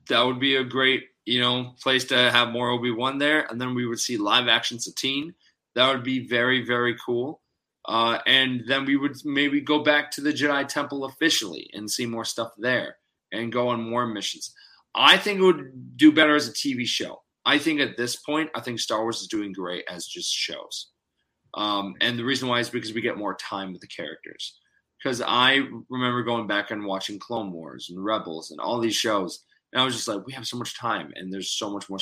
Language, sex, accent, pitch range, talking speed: English, male, American, 105-130 Hz, 220 wpm